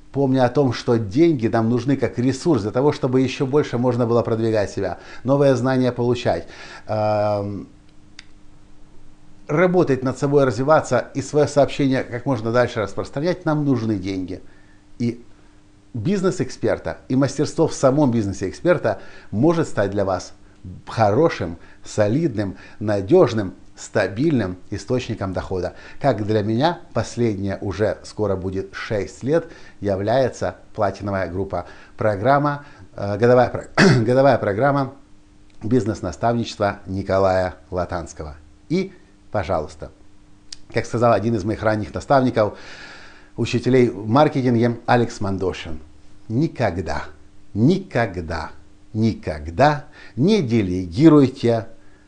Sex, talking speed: male, 105 wpm